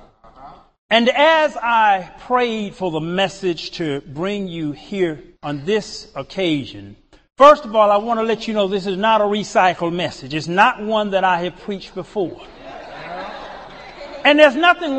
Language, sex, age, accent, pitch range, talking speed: English, male, 40-59, American, 205-300 Hz, 160 wpm